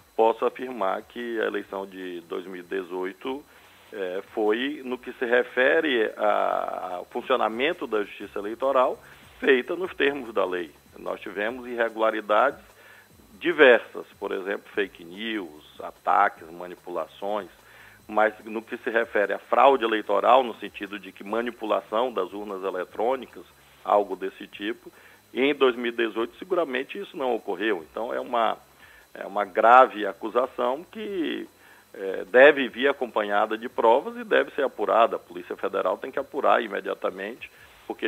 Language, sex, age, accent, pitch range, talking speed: Portuguese, male, 40-59, Brazilian, 105-175 Hz, 130 wpm